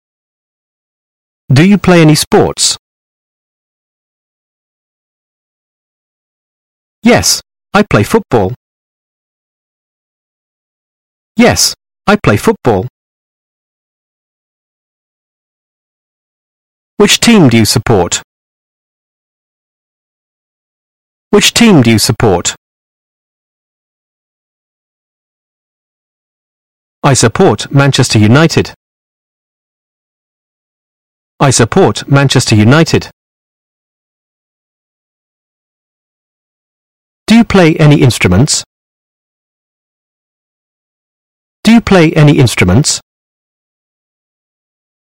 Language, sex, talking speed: Vietnamese, male, 55 wpm